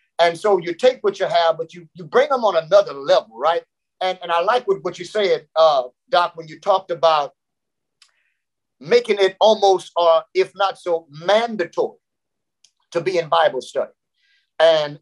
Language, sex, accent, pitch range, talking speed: English, male, American, 165-225 Hz, 170 wpm